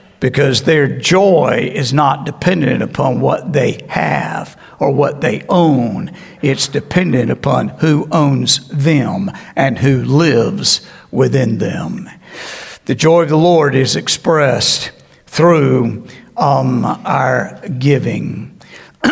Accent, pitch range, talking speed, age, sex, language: American, 135-185 Hz, 115 wpm, 60-79, male, English